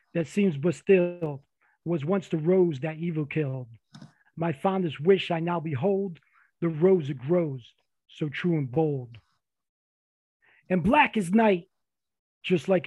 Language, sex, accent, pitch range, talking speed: English, male, American, 150-185 Hz, 145 wpm